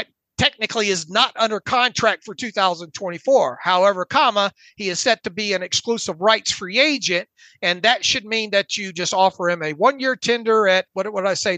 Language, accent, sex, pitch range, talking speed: English, American, male, 195-235 Hz, 190 wpm